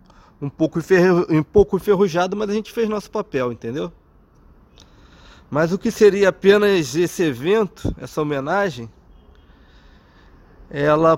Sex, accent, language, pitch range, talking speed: male, Brazilian, Portuguese, 120-170 Hz, 105 wpm